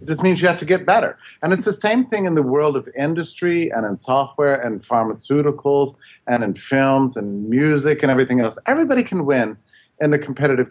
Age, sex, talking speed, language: 40-59, male, 205 wpm, English